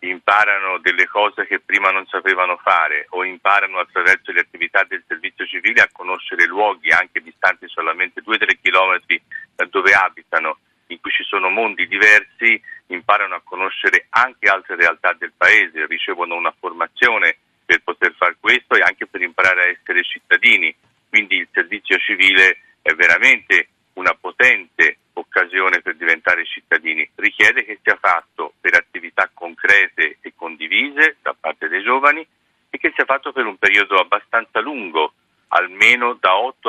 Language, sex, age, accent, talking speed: Italian, male, 40-59, native, 150 wpm